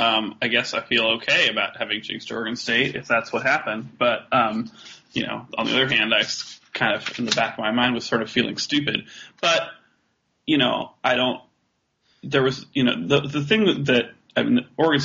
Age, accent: 20-39, American